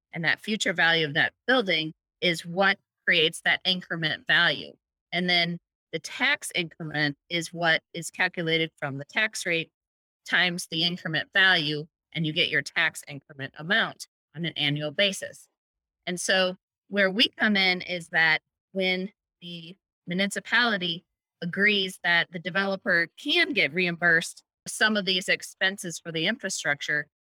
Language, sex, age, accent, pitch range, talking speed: English, female, 30-49, American, 165-200 Hz, 145 wpm